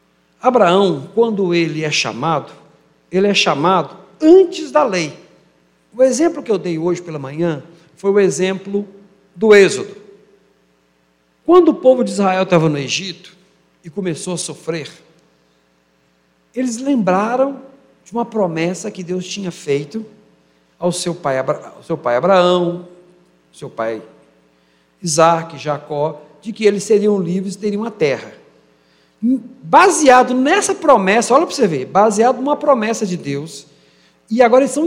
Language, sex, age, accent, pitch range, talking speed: Portuguese, male, 60-79, Brazilian, 150-245 Hz, 140 wpm